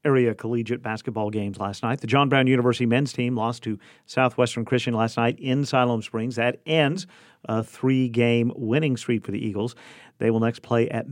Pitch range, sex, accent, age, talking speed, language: 110-135 Hz, male, American, 50-69, 190 wpm, English